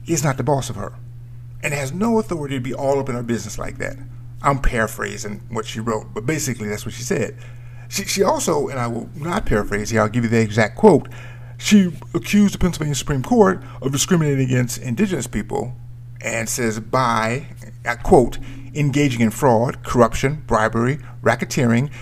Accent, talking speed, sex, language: American, 185 wpm, male, English